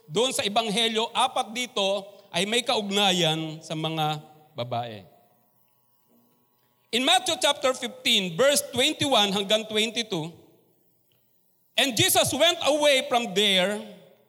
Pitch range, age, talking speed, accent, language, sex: 175-245 Hz, 40-59, 105 wpm, native, Filipino, male